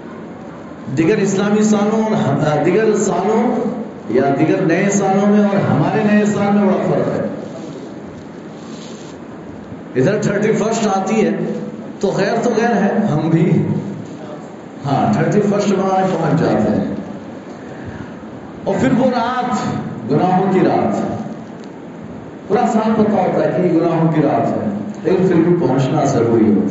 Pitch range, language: 175-220 Hz, Urdu